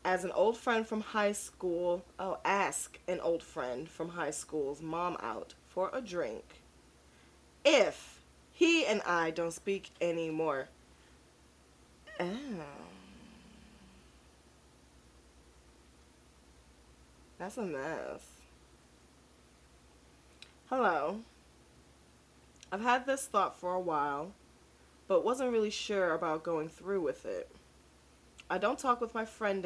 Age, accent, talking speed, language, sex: 20-39, American, 110 wpm, English, female